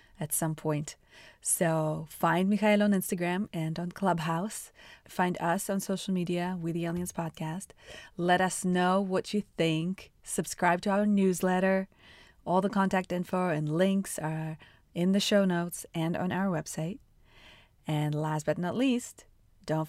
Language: English